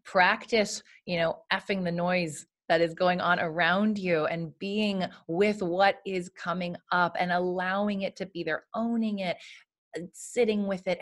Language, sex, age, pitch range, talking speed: English, female, 30-49, 155-185 Hz, 165 wpm